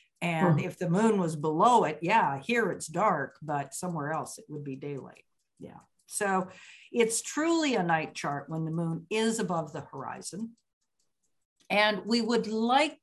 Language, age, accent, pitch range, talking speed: English, 60-79, American, 155-215 Hz, 165 wpm